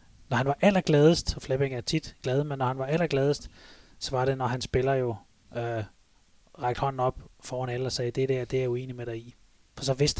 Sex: male